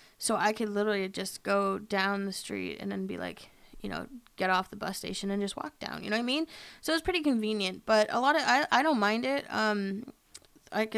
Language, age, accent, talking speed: English, 20-39, American, 245 wpm